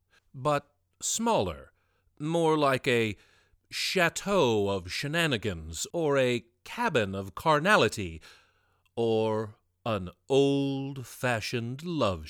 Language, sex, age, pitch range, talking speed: English, male, 40-59, 95-145 Hz, 85 wpm